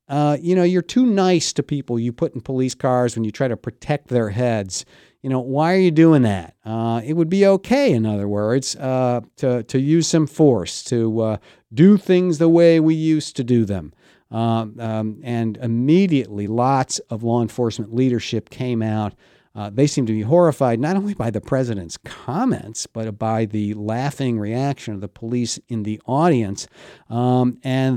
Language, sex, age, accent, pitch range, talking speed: English, male, 50-69, American, 110-150 Hz, 190 wpm